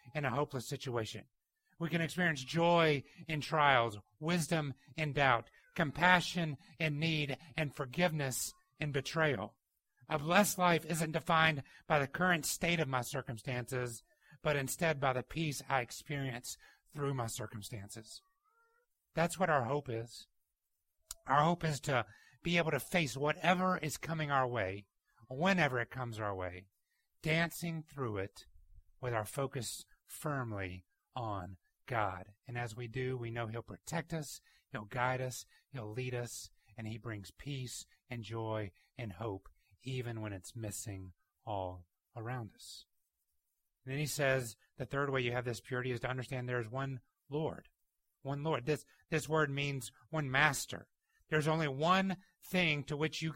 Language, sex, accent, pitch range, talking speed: English, male, American, 115-155 Hz, 155 wpm